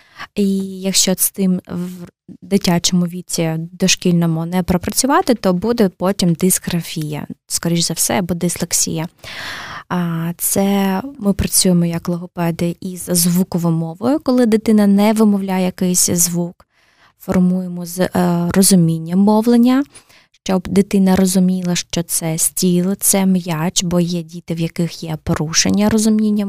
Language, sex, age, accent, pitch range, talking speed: Ukrainian, female, 20-39, native, 175-200 Hz, 120 wpm